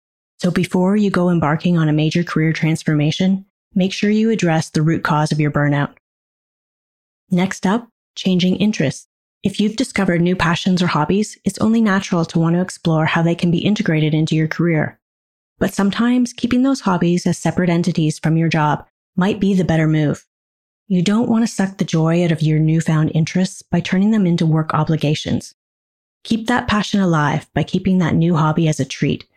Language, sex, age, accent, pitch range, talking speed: English, female, 30-49, American, 155-195 Hz, 190 wpm